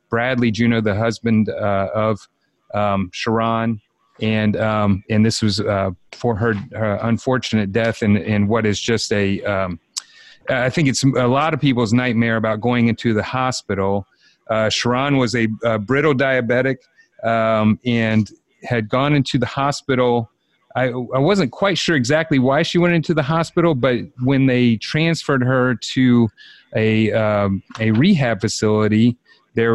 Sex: male